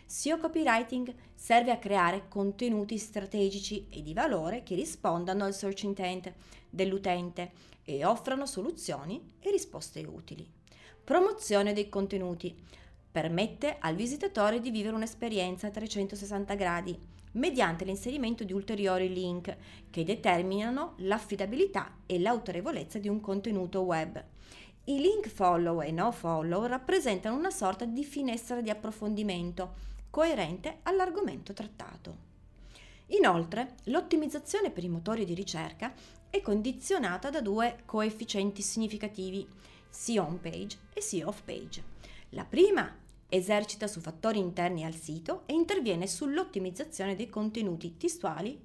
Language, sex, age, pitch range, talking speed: Italian, female, 30-49, 185-245 Hz, 120 wpm